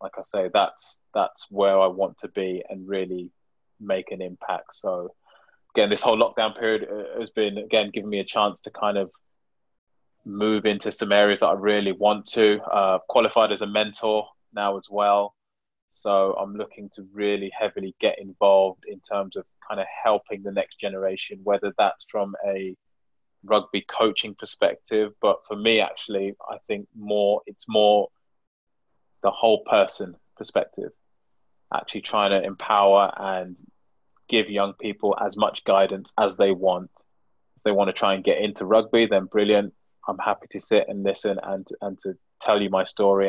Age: 20-39